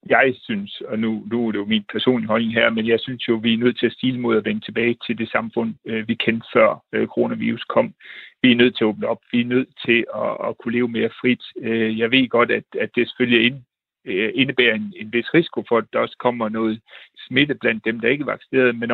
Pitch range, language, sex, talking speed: 110-125 Hz, Danish, male, 245 wpm